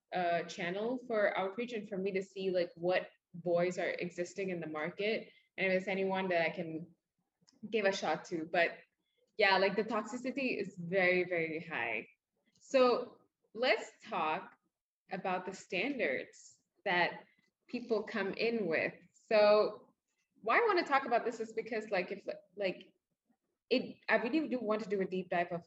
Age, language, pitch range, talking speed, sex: 20-39, English, 175-220 Hz, 170 wpm, female